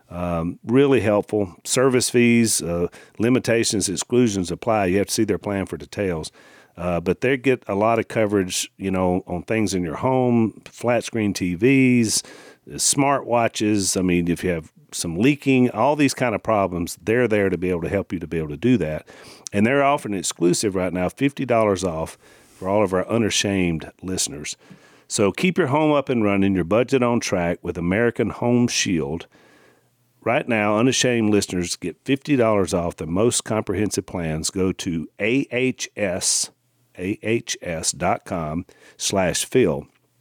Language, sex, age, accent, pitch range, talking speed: English, male, 50-69, American, 90-120 Hz, 160 wpm